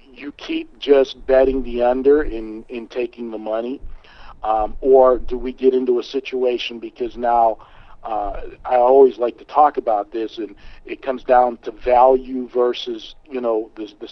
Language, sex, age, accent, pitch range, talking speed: English, male, 50-69, American, 115-135 Hz, 170 wpm